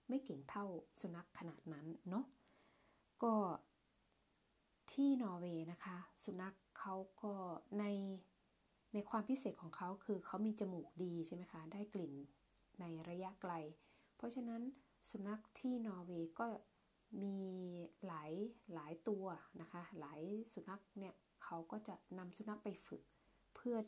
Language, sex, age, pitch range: Thai, female, 20-39, 170-215 Hz